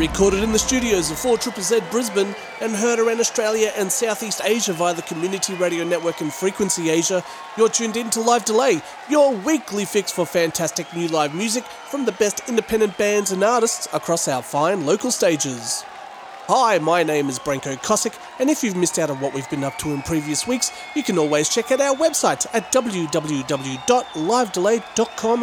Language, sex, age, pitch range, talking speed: English, male, 30-49, 170-235 Hz, 180 wpm